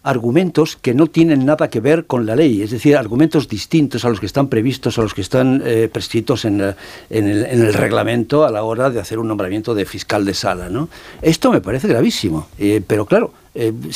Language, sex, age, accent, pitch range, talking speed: Spanish, male, 60-79, Spanish, 110-140 Hz, 220 wpm